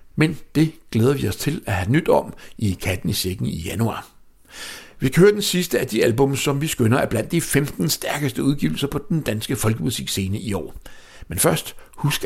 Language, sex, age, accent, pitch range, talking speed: English, male, 60-79, Danish, 105-150 Hz, 200 wpm